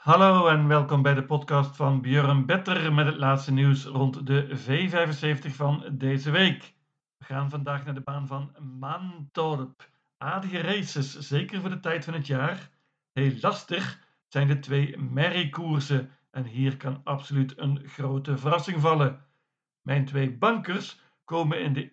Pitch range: 135-160 Hz